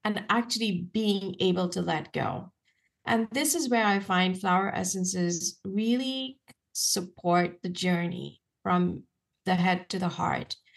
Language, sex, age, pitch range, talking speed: English, female, 30-49, 180-230 Hz, 140 wpm